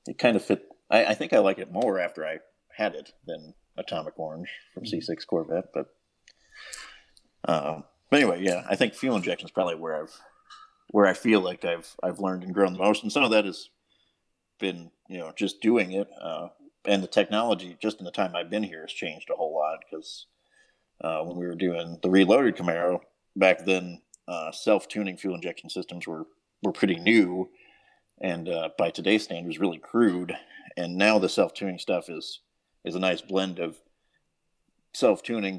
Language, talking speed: English, 185 wpm